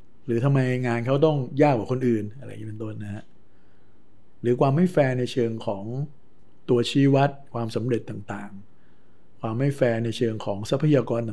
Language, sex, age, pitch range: Thai, male, 60-79, 105-130 Hz